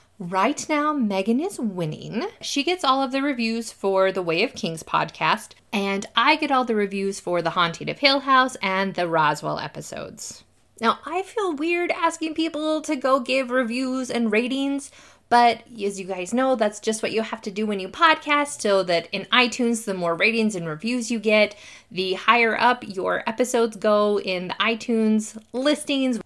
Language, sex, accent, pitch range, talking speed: English, female, American, 190-255 Hz, 185 wpm